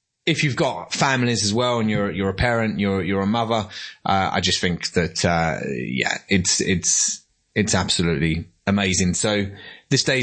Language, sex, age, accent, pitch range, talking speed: English, male, 30-49, British, 95-130 Hz, 175 wpm